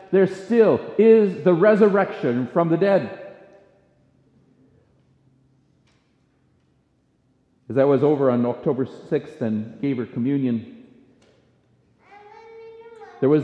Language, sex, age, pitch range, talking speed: English, male, 50-69, 110-160 Hz, 95 wpm